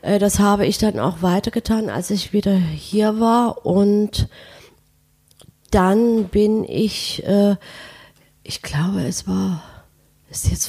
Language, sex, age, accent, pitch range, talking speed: German, female, 30-49, German, 165-200 Hz, 120 wpm